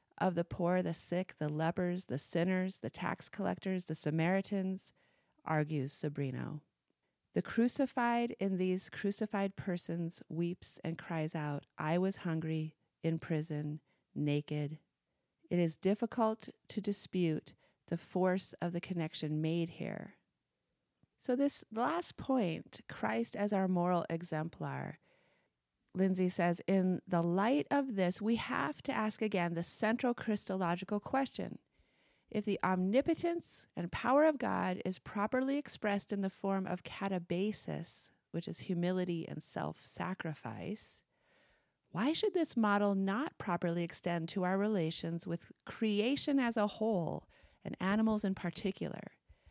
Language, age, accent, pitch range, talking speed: English, 40-59, American, 165-210 Hz, 130 wpm